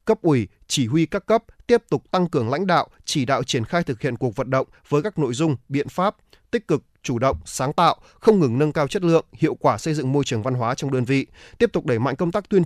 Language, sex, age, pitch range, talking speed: Vietnamese, male, 20-39, 130-175 Hz, 270 wpm